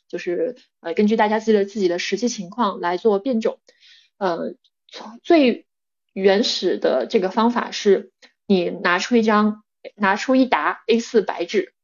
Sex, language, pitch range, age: female, Chinese, 195-245 Hz, 20-39